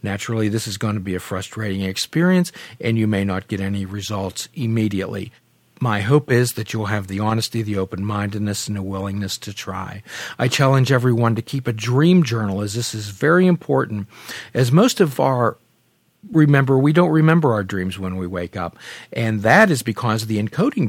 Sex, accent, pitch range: male, American, 105-145 Hz